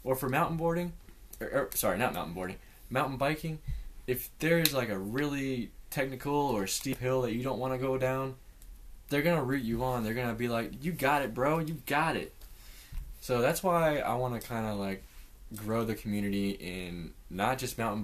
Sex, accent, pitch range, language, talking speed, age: male, American, 100-130 Hz, English, 210 wpm, 10-29